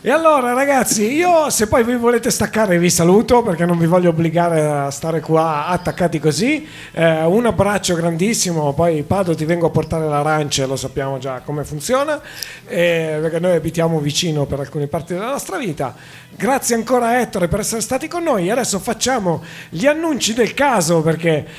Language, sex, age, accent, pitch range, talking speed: Italian, male, 40-59, native, 155-225 Hz, 180 wpm